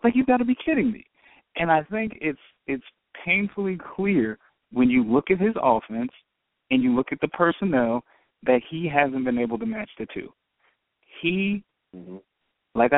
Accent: American